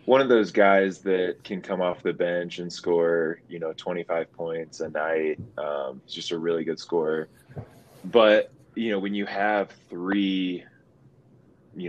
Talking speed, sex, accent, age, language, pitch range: 165 wpm, male, American, 20-39, English, 85-95 Hz